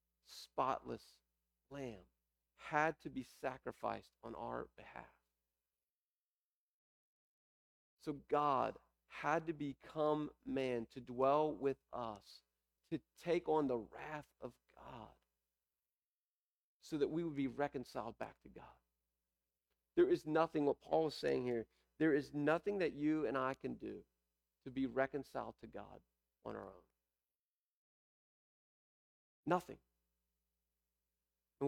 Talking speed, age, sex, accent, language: 120 wpm, 40-59, male, American, English